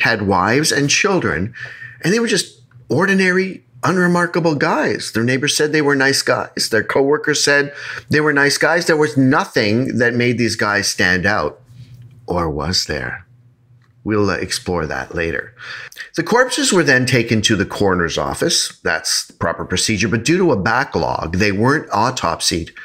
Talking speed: 165 wpm